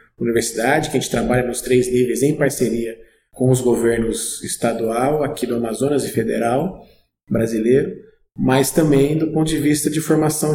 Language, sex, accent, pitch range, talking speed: Portuguese, male, Brazilian, 125-150 Hz, 160 wpm